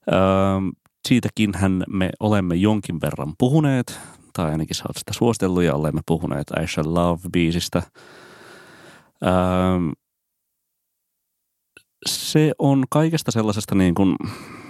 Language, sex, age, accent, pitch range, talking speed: Finnish, male, 30-49, native, 80-95 Hz, 105 wpm